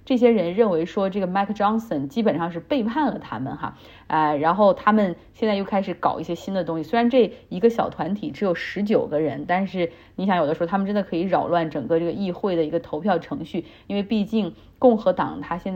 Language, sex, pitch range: Chinese, female, 165-215 Hz